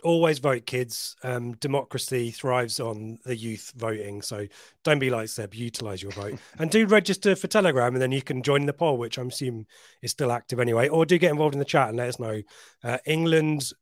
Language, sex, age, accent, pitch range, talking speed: English, male, 30-49, British, 115-150 Hz, 215 wpm